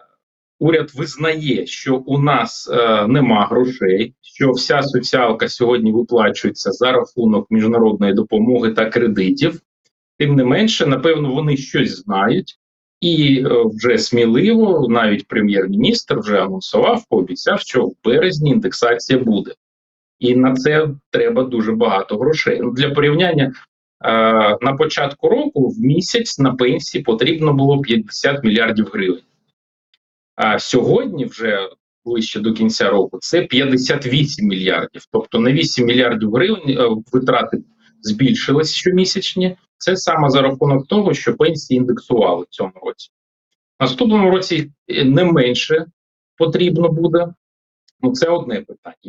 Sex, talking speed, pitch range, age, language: male, 125 wpm, 120-165 Hz, 30-49, Ukrainian